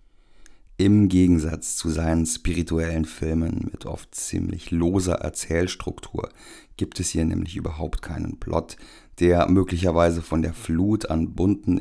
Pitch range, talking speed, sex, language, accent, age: 80-95 Hz, 125 wpm, male, German, German, 50-69